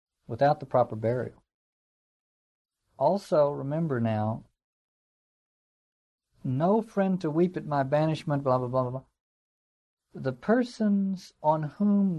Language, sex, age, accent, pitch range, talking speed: English, male, 60-79, American, 120-160 Hz, 110 wpm